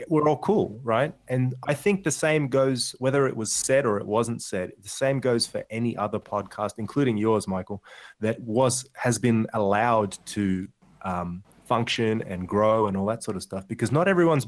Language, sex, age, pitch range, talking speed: English, male, 20-39, 100-120 Hz, 195 wpm